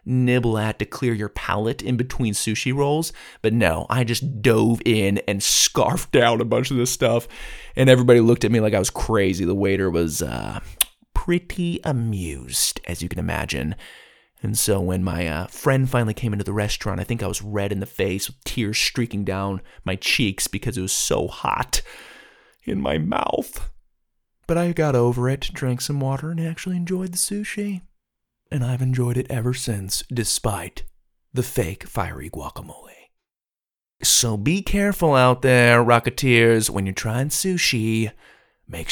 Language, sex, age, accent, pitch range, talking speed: English, male, 20-39, American, 105-155 Hz, 170 wpm